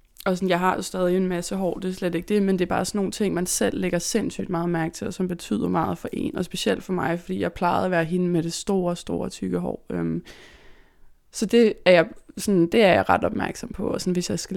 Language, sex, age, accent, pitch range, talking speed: Danish, female, 20-39, native, 170-195 Hz, 275 wpm